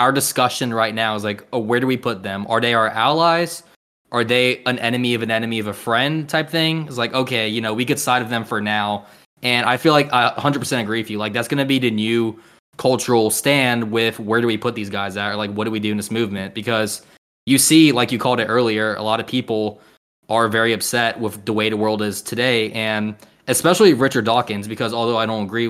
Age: 20-39